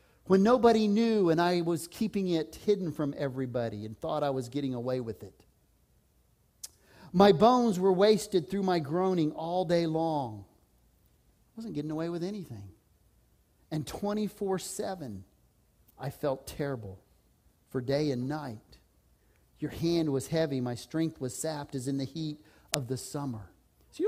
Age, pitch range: 40-59, 160-230 Hz